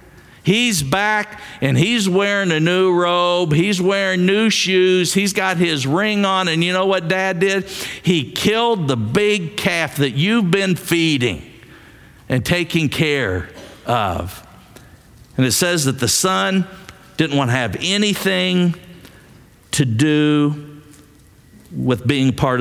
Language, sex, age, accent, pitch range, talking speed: English, male, 50-69, American, 125-185 Hz, 140 wpm